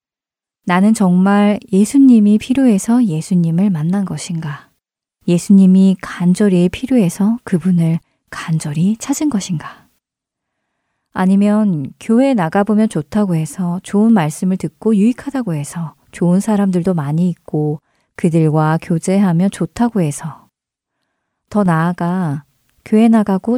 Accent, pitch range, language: native, 165-215 Hz, Korean